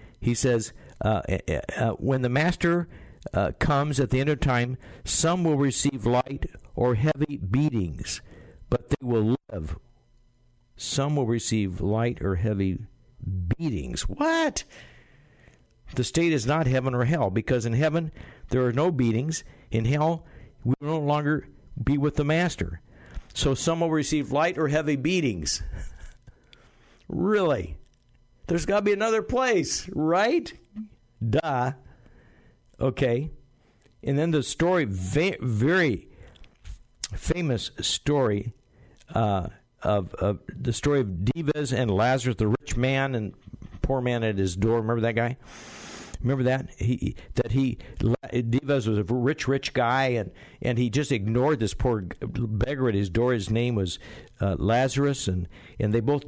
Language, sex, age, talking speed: English, male, 60-79, 145 wpm